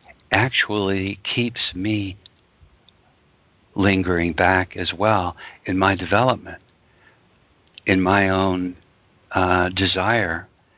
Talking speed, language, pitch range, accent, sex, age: 85 wpm, English, 90-110 Hz, American, male, 60-79